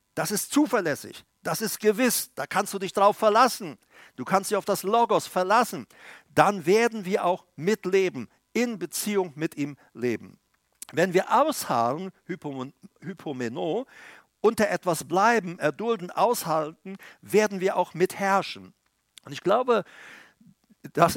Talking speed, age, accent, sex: 130 wpm, 50-69, German, male